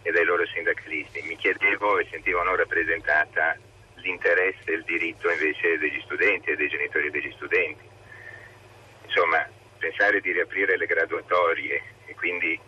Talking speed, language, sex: 140 wpm, Italian, male